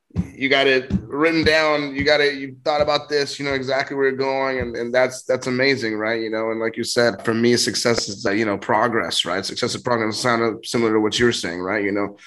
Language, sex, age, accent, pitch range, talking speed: English, male, 20-39, American, 105-120 Hz, 250 wpm